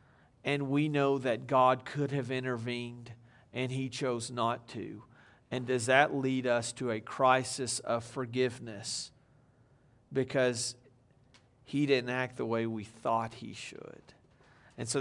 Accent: American